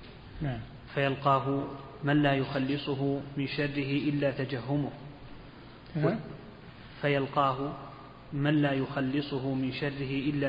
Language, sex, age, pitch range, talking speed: Arabic, male, 30-49, 135-145 Hz, 85 wpm